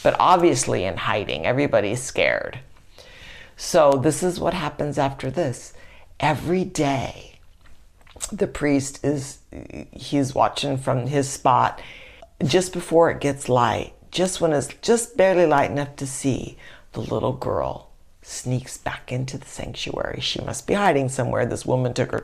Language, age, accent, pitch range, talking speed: English, 60-79, American, 120-145 Hz, 145 wpm